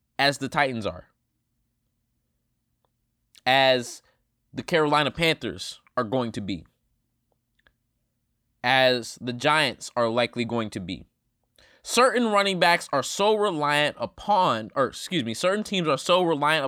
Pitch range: 115-140 Hz